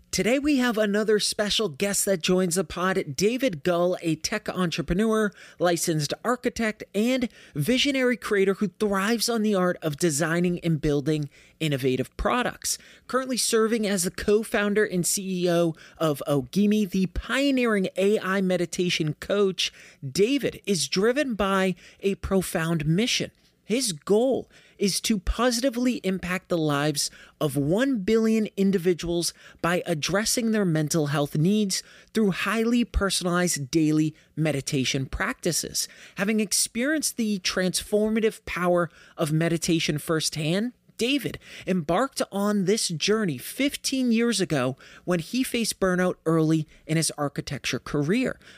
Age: 30-49